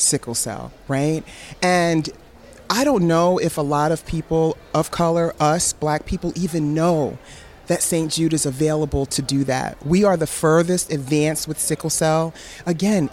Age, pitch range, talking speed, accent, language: 40-59, 145-185 Hz, 165 wpm, American, English